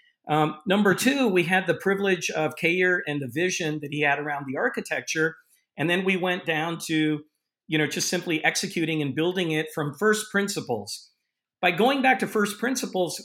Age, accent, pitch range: 50-69, American, 145-185 Hz